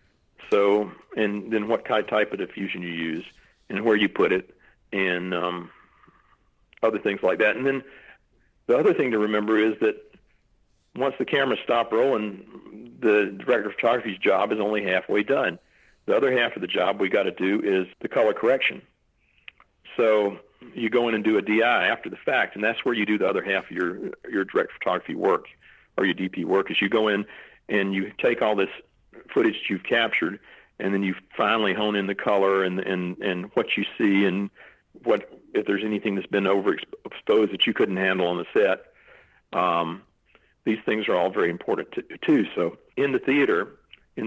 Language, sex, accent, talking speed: English, male, American, 190 wpm